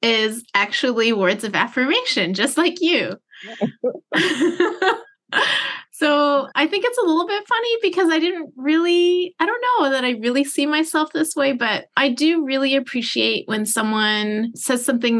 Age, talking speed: 20-39, 155 wpm